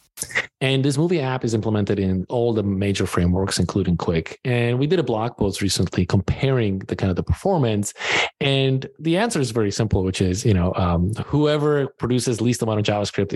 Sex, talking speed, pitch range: male, 195 wpm, 100-140 Hz